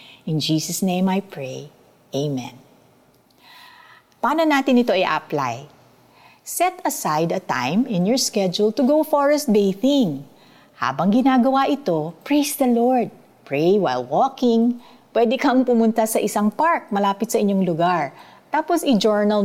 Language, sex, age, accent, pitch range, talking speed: Filipino, female, 50-69, native, 175-270 Hz, 130 wpm